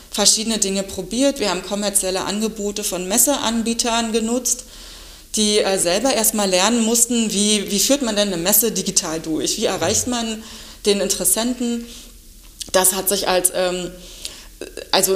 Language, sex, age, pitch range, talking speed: German, female, 30-49, 190-230 Hz, 145 wpm